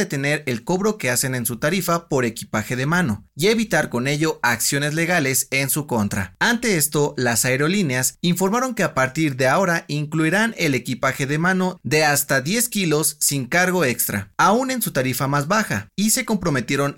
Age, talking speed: 30-49, 185 wpm